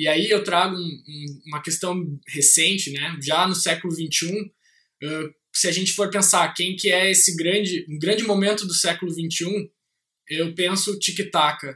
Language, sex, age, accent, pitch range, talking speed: Portuguese, male, 20-39, Brazilian, 170-205 Hz, 175 wpm